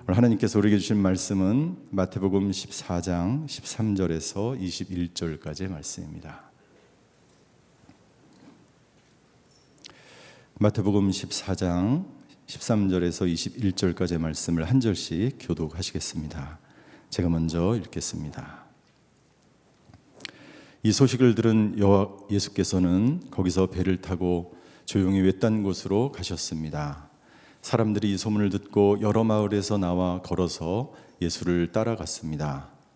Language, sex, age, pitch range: Korean, male, 40-59, 90-105 Hz